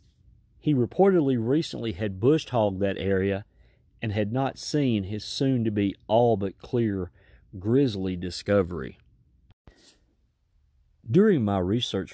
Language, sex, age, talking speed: English, male, 40-59, 95 wpm